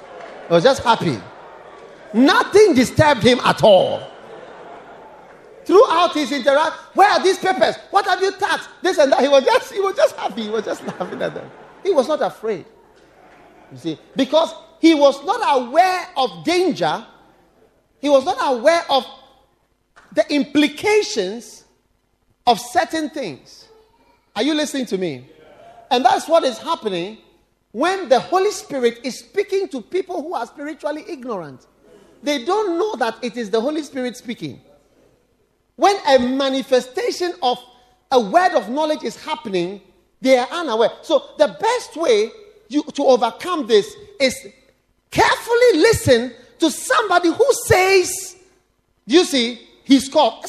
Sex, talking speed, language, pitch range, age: male, 145 wpm, English, 245-370 Hz, 40-59